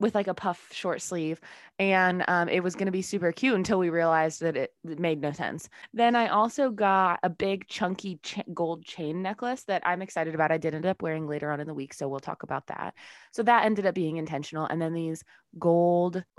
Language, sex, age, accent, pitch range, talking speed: English, female, 20-39, American, 150-190 Hz, 230 wpm